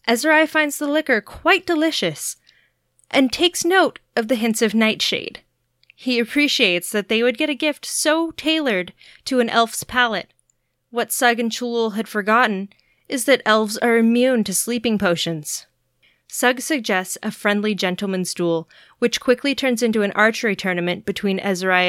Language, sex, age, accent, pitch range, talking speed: English, female, 20-39, American, 185-245 Hz, 155 wpm